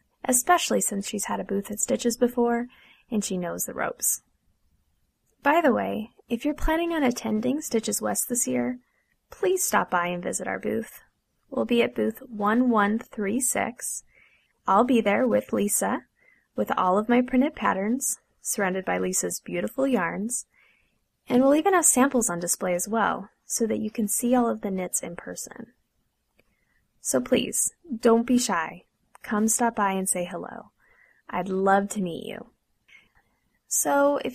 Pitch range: 195-255 Hz